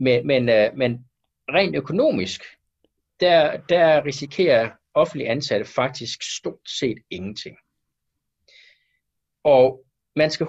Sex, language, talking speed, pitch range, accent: male, Danish, 95 wpm, 130-190 Hz, native